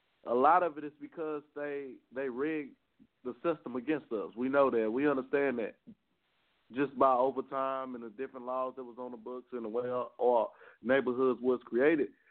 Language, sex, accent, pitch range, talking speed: English, male, American, 130-160 Hz, 190 wpm